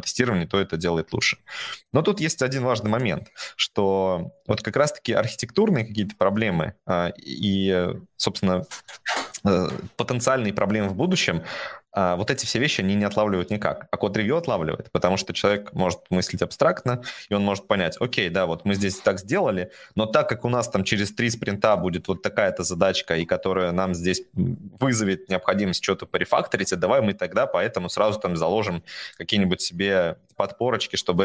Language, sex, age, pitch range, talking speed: Russian, male, 20-39, 90-115 Hz, 160 wpm